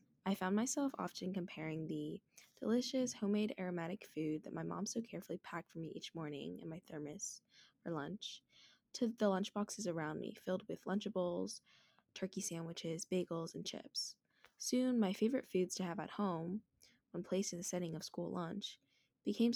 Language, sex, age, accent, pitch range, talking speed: English, female, 10-29, American, 170-220 Hz, 170 wpm